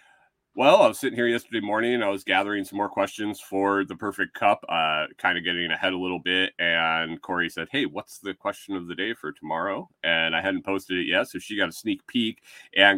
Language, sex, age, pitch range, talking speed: English, male, 30-49, 85-110 Hz, 230 wpm